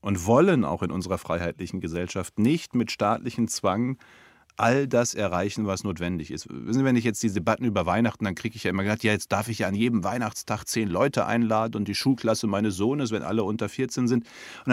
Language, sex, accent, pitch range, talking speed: English, male, German, 105-125 Hz, 220 wpm